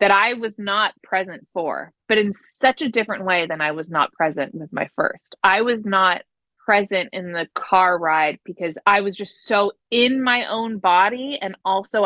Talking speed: 195 wpm